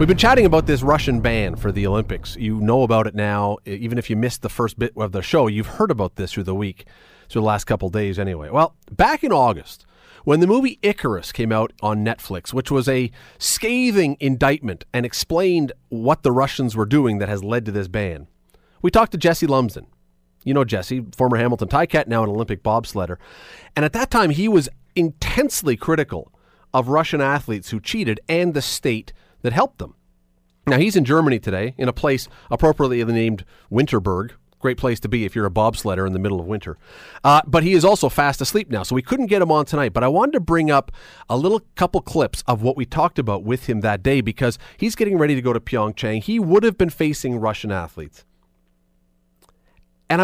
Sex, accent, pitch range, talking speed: male, American, 105-155 Hz, 210 wpm